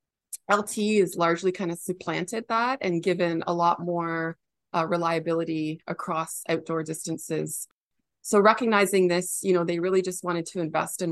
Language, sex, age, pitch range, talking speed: English, female, 20-39, 165-180 Hz, 155 wpm